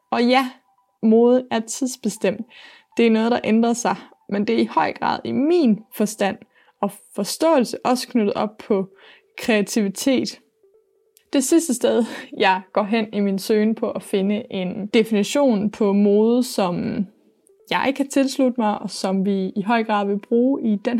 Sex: female